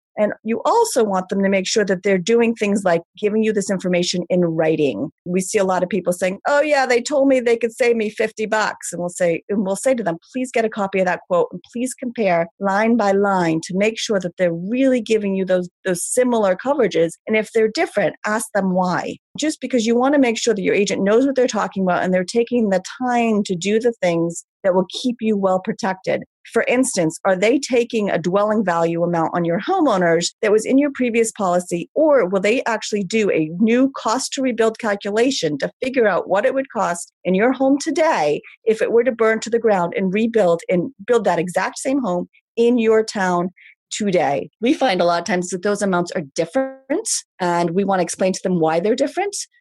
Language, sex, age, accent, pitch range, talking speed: English, female, 40-59, American, 185-240 Hz, 225 wpm